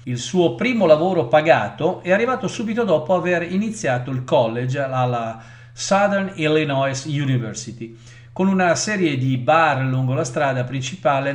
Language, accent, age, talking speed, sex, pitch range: Italian, native, 50-69, 140 wpm, male, 120-160 Hz